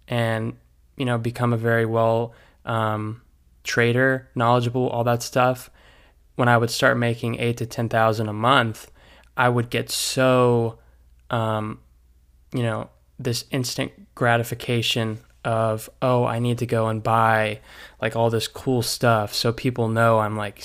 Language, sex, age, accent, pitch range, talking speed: English, male, 20-39, American, 110-120 Hz, 150 wpm